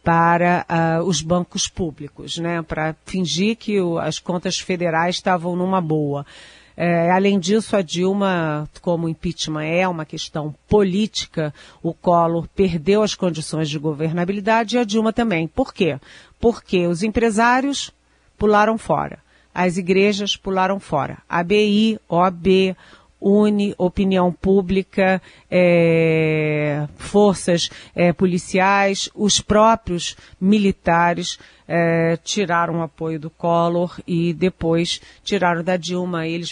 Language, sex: Portuguese, female